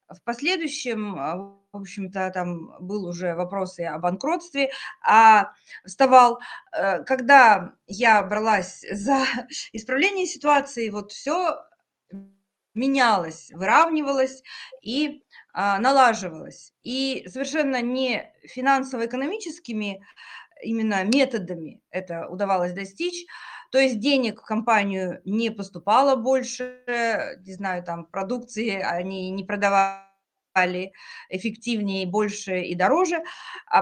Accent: native